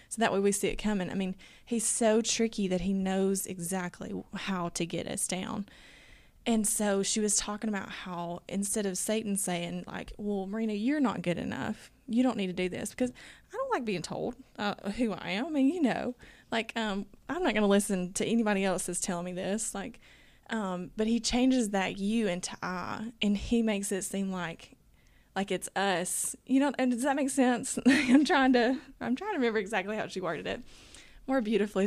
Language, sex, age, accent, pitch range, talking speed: English, female, 20-39, American, 185-230 Hz, 210 wpm